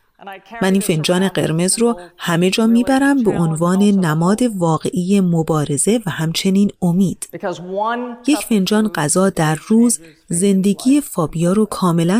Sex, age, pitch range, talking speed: female, 30-49, 170-240 Hz, 125 wpm